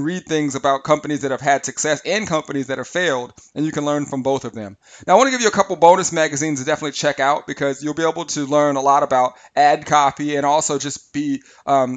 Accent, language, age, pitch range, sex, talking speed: American, English, 30-49, 130-155 Hz, male, 255 wpm